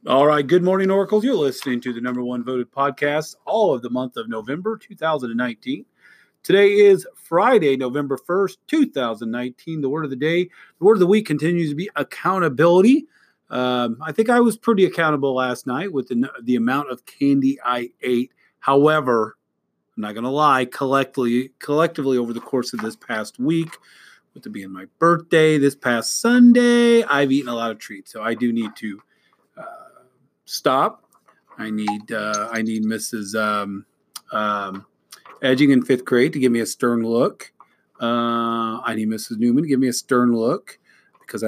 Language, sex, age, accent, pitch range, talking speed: English, male, 30-49, American, 120-180 Hz, 180 wpm